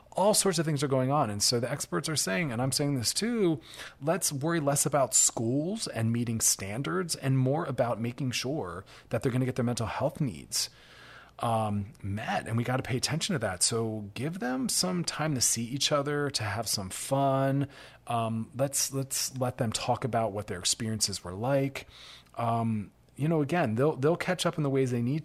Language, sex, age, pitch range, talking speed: English, male, 30-49, 110-140 Hz, 210 wpm